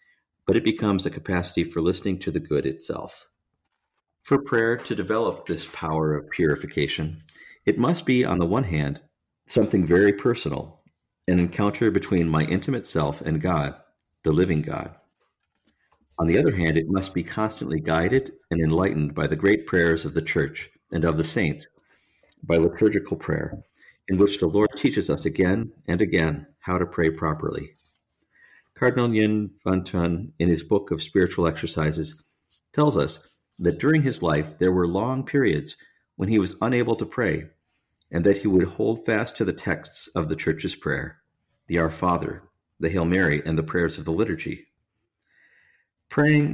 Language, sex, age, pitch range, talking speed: English, male, 50-69, 80-110 Hz, 165 wpm